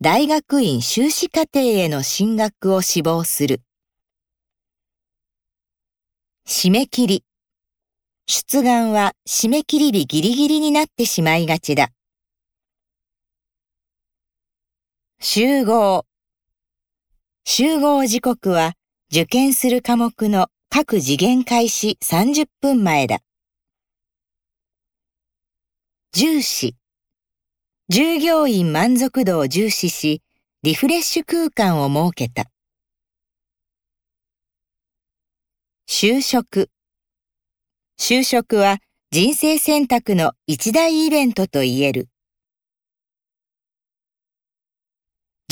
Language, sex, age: Japanese, female, 50-69